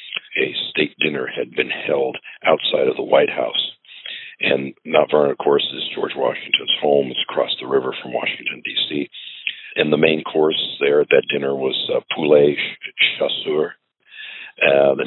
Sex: male